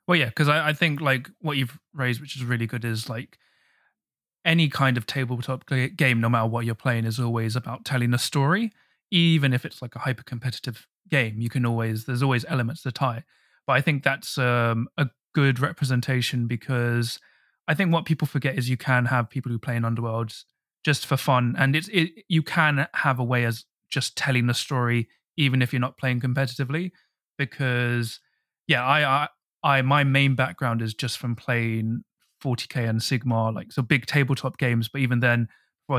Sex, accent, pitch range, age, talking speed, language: male, British, 120-140 Hz, 20-39, 195 wpm, English